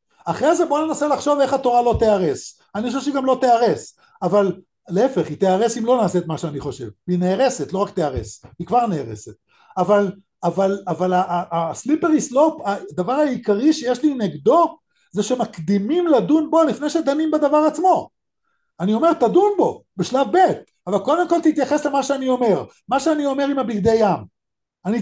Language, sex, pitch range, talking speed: Hebrew, male, 205-295 Hz, 175 wpm